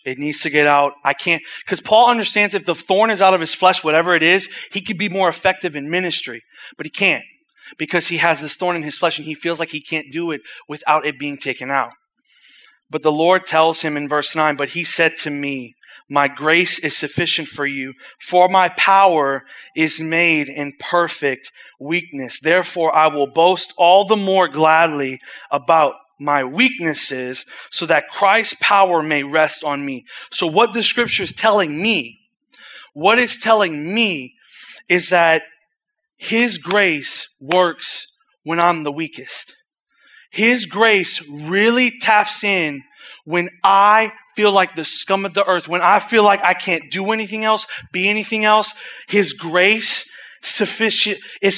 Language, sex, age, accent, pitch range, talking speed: English, male, 30-49, American, 155-210 Hz, 170 wpm